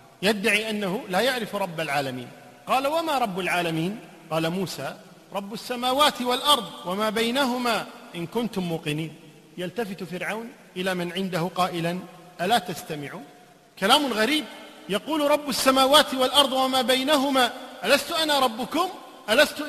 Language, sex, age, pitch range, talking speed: Arabic, male, 40-59, 190-265 Hz, 120 wpm